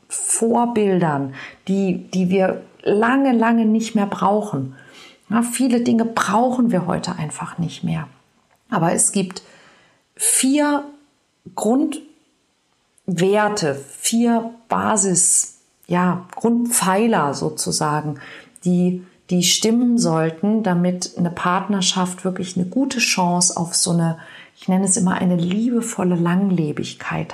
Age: 50-69